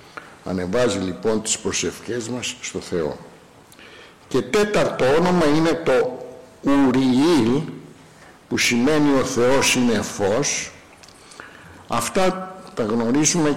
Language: Greek